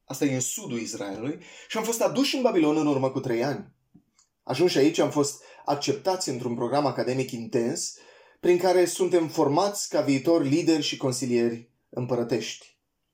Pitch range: 125-195 Hz